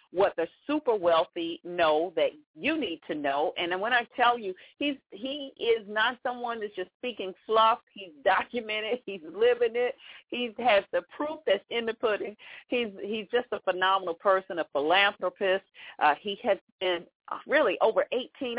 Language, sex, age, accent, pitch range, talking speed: English, female, 40-59, American, 170-265 Hz, 170 wpm